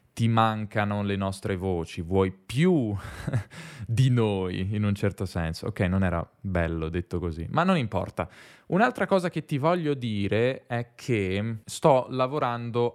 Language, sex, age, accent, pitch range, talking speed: Italian, male, 10-29, native, 95-120 Hz, 150 wpm